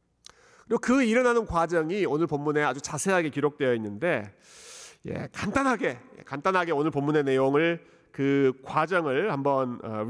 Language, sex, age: Korean, male, 40-59